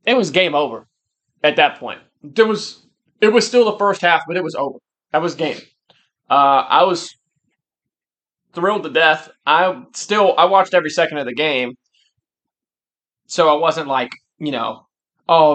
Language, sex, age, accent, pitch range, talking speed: English, male, 20-39, American, 135-175 Hz, 170 wpm